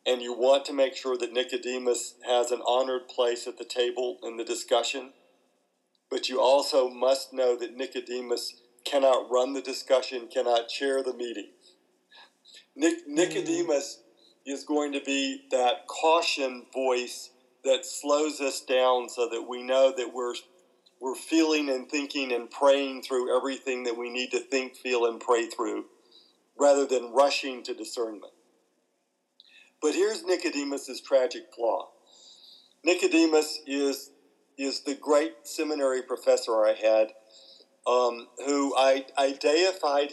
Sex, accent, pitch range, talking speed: male, American, 125-145 Hz, 140 wpm